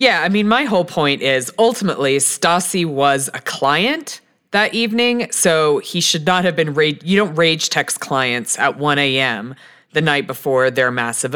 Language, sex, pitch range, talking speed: English, female, 135-170 Hz, 180 wpm